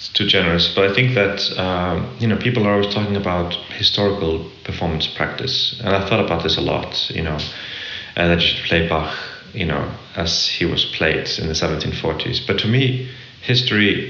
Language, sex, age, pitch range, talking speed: English, male, 30-49, 85-105 Hz, 195 wpm